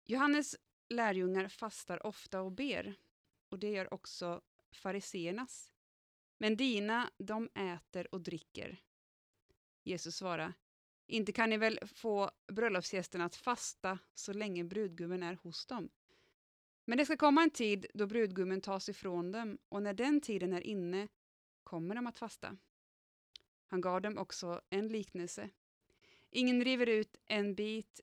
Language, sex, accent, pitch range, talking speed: Swedish, female, Norwegian, 180-225 Hz, 140 wpm